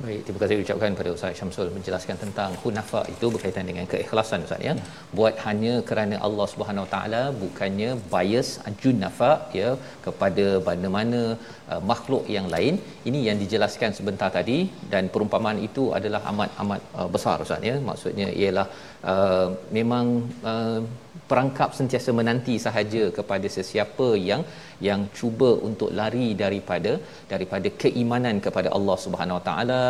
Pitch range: 105-120 Hz